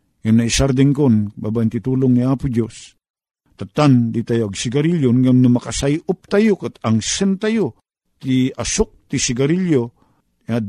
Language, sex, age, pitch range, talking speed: Filipino, male, 50-69, 125-160 Hz, 140 wpm